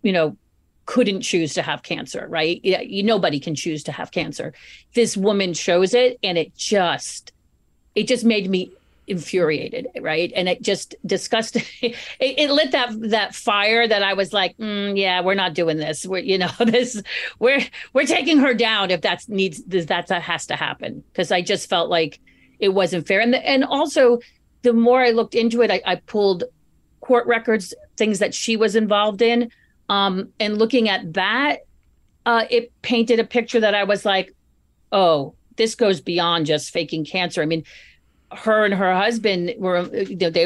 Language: English